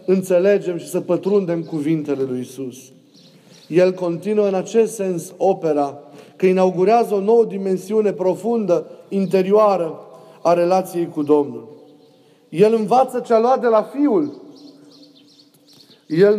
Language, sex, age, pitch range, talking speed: Romanian, male, 30-49, 175-215 Hz, 115 wpm